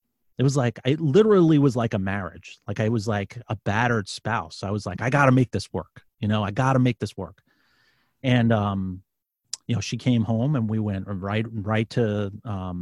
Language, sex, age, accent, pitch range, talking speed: English, male, 30-49, American, 95-120 Hz, 210 wpm